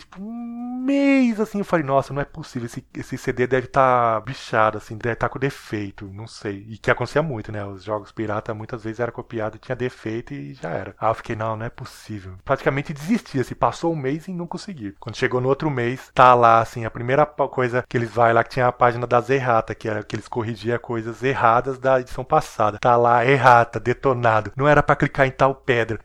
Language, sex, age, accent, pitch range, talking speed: Portuguese, male, 20-39, Brazilian, 120-150 Hz, 230 wpm